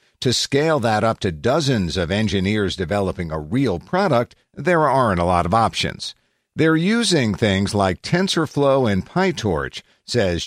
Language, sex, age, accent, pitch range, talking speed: English, male, 50-69, American, 100-145 Hz, 150 wpm